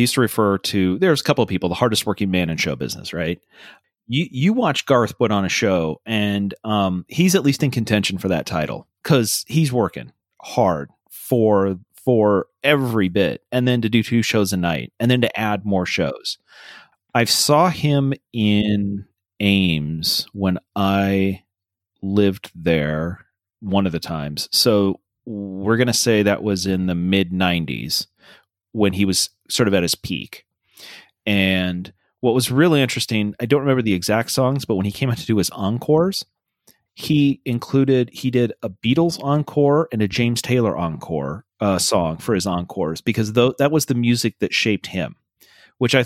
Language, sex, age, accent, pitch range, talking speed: English, male, 30-49, American, 95-125 Hz, 180 wpm